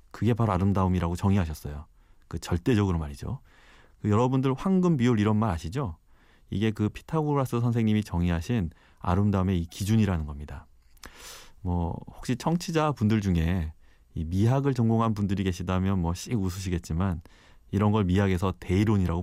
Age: 30-49